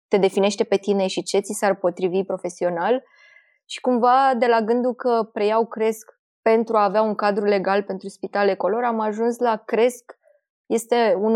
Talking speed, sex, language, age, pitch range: 175 wpm, female, Romanian, 20-39, 195-230 Hz